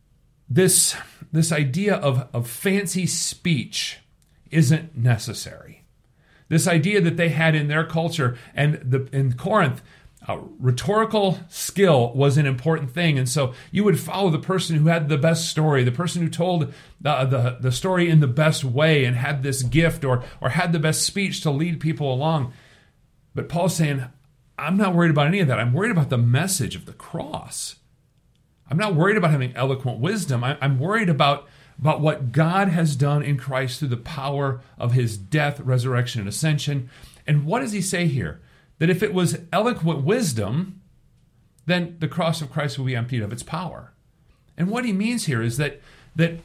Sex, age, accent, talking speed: male, 40-59, American, 180 wpm